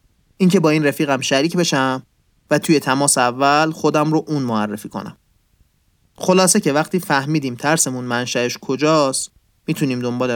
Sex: male